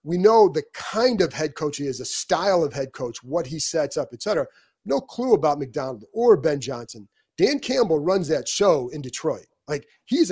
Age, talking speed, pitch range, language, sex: 30-49, 210 wpm, 140-180 Hz, English, male